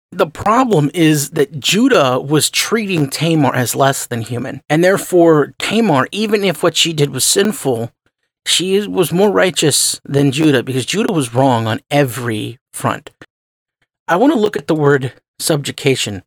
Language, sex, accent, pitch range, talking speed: English, male, American, 140-200 Hz, 160 wpm